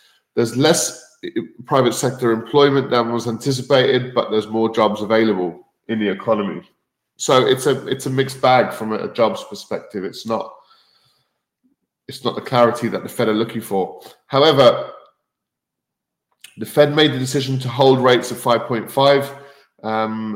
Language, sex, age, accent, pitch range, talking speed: English, male, 20-39, British, 115-145 Hz, 155 wpm